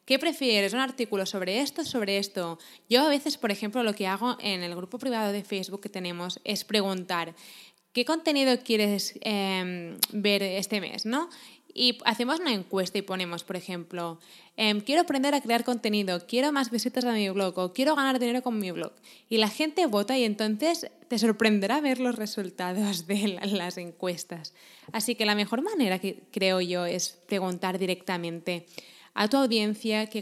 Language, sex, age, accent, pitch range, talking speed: Spanish, female, 20-39, Spanish, 185-235 Hz, 180 wpm